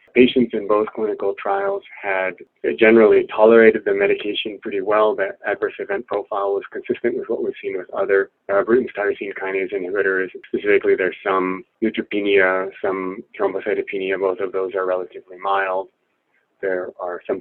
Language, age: English, 30-49